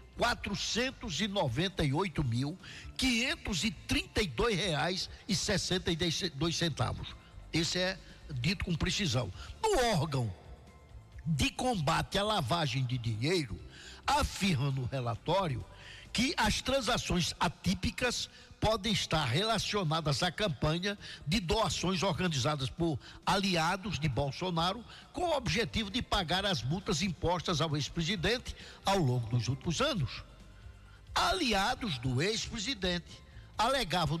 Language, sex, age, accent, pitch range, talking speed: Portuguese, male, 60-79, Brazilian, 135-195 Hz, 95 wpm